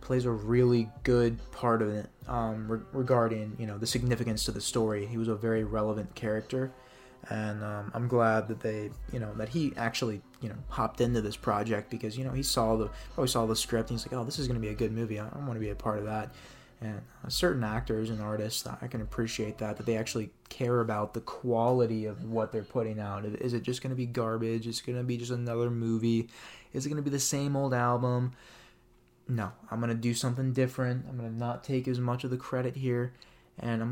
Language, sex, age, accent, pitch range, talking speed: English, male, 20-39, American, 110-125 Hz, 235 wpm